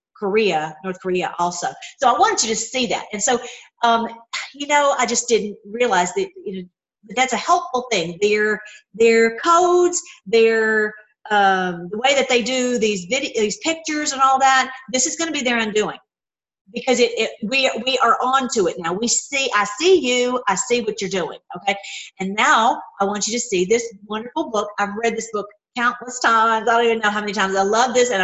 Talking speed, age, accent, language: 210 wpm, 40-59, American, English